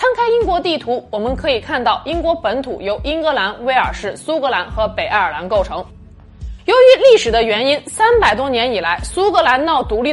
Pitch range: 210-315 Hz